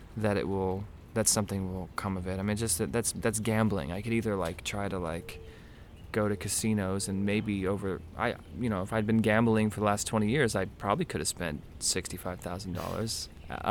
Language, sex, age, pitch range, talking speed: English, male, 20-39, 95-115 Hz, 205 wpm